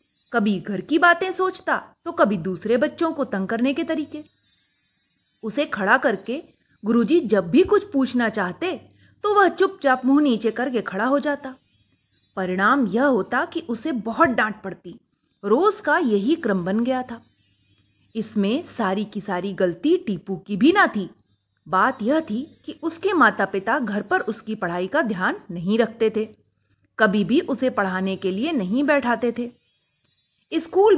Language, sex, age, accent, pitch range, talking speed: Hindi, female, 30-49, native, 200-300 Hz, 160 wpm